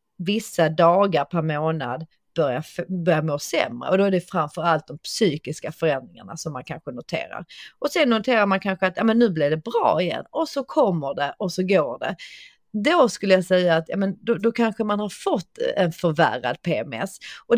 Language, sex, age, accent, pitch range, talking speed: Swedish, female, 30-49, native, 160-210 Hz, 185 wpm